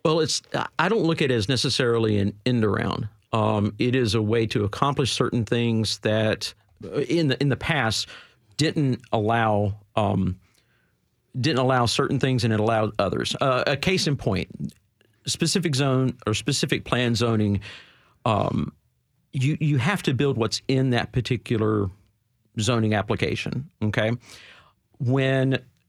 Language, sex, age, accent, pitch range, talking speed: English, male, 50-69, American, 110-140 Hz, 145 wpm